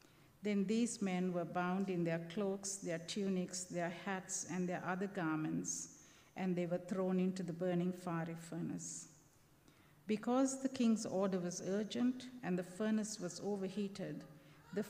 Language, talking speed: English, 150 wpm